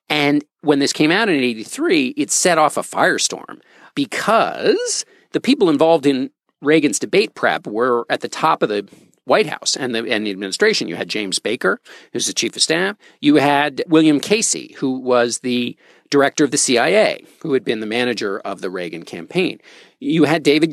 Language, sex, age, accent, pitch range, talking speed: English, male, 50-69, American, 130-190 Hz, 185 wpm